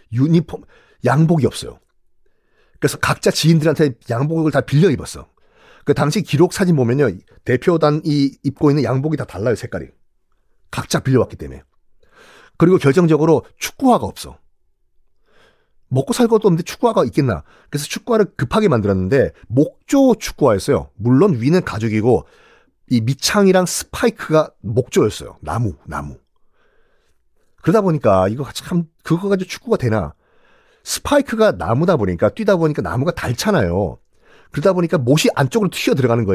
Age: 40-59